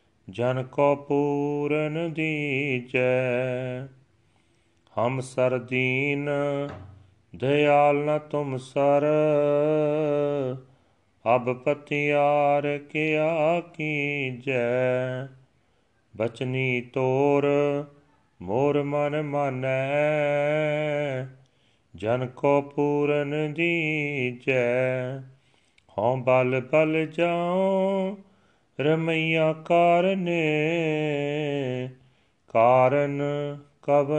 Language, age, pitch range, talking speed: Punjabi, 40-59, 130-145 Hz, 55 wpm